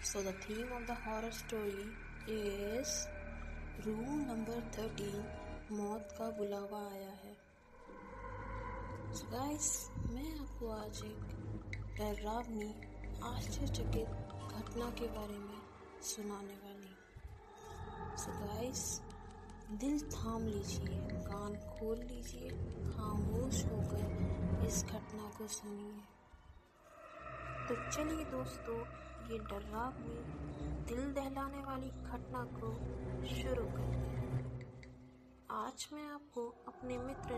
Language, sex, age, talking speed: English, female, 20-39, 85 wpm